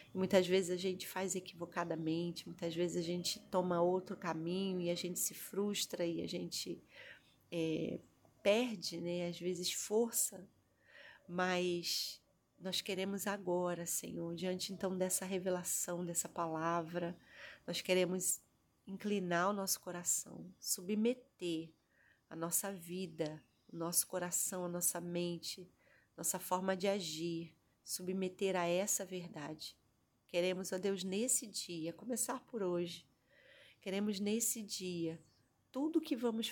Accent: Brazilian